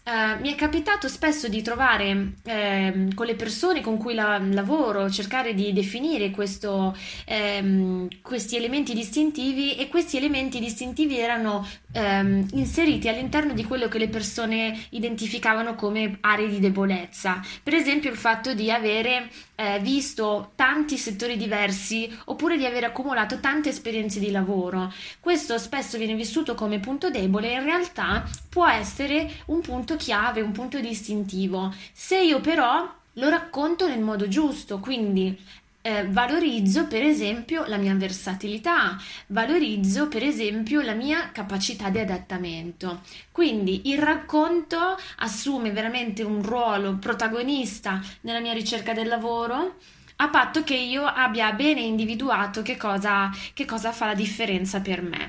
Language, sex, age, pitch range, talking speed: Italian, female, 20-39, 205-275 Hz, 135 wpm